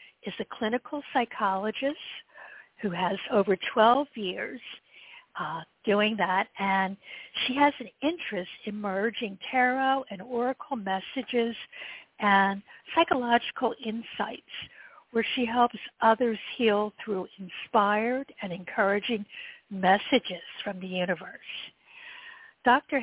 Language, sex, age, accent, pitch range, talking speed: English, female, 60-79, American, 200-270 Hz, 105 wpm